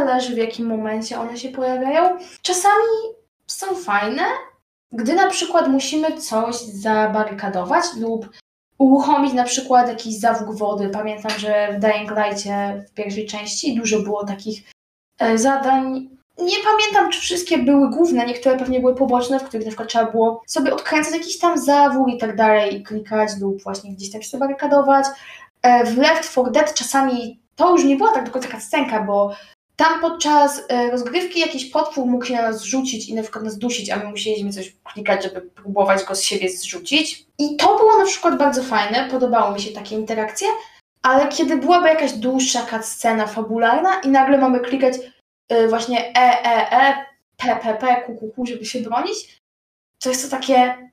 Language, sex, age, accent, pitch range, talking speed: Polish, female, 20-39, native, 220-285 Hz, 175 wpm